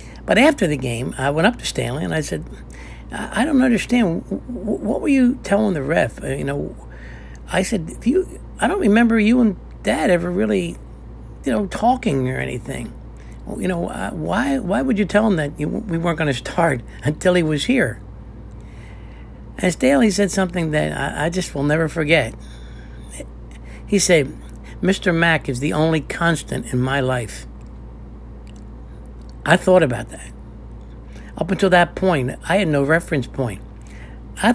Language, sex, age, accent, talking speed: English, male, 60-79, American, 160 wpm